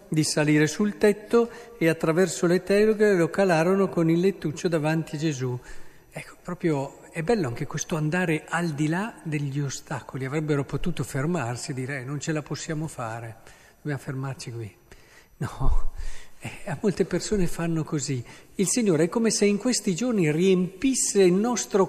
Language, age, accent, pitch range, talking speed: Italian, 50-69, native, 140-185 Hz, 155 wpm